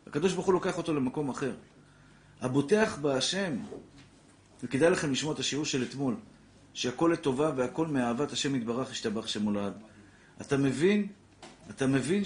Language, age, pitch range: Hebrew, 50-69, 120-165 Hz